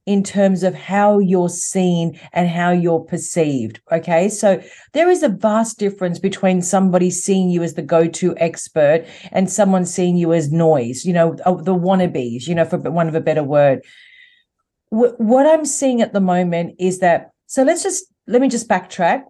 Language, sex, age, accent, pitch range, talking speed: English, female, 40-59, Australian, 170-220 Hz, 180 wpm